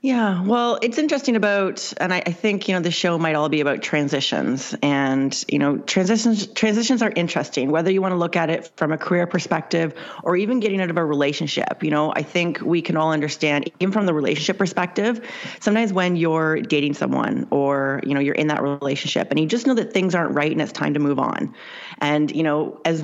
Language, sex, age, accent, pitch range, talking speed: English, female, 30-49, American, 150-185 Hz, 225 wpm